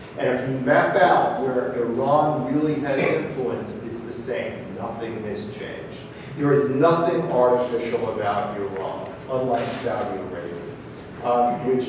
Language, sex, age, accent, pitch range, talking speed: English, male, 50-69, American, 120-140 Hz, 135 wpm